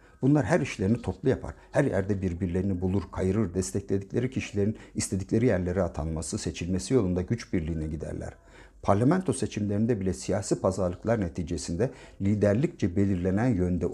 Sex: male